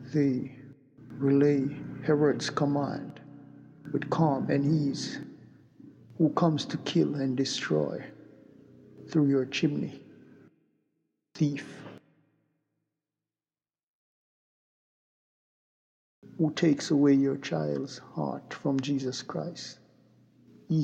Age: 60-79